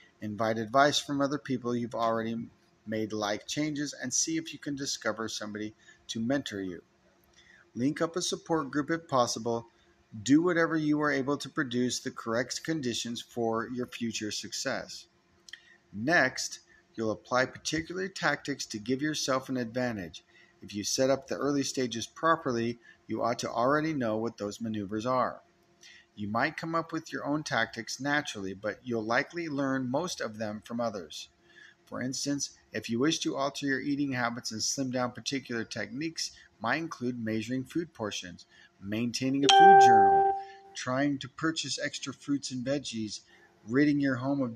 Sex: male